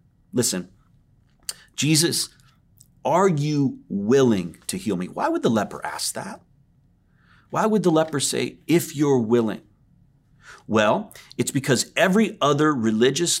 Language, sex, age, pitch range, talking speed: English, male, 40-59, 130-185 Hz, 125 wpm